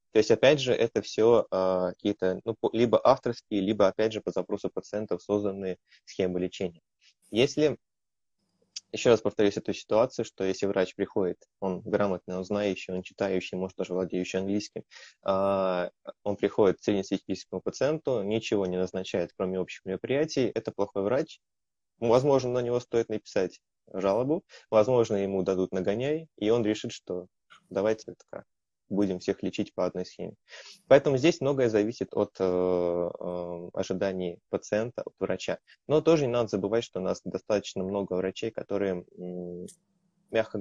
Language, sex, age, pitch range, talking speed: Russian, male, 20-39, 95-110 Hz, 150 wpm